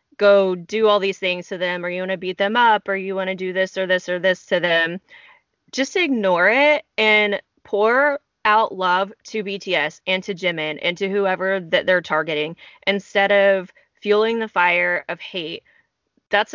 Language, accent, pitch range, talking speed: English, American, 180-215 Hz, 190 wpm